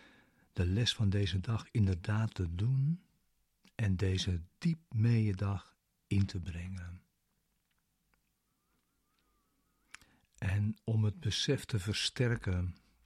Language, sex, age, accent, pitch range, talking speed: Dutch, male, 60-79, Dutch, 95-110 Hz, 100 wpm